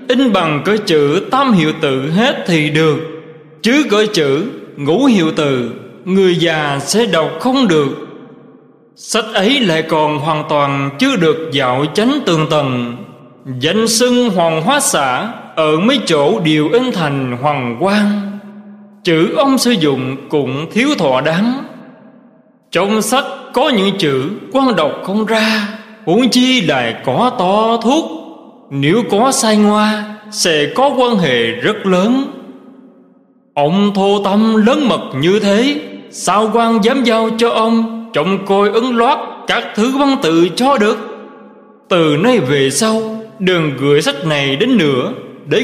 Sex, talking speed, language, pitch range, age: male, 150 wpm, Vietnamese, 155-235 Hz, 20-39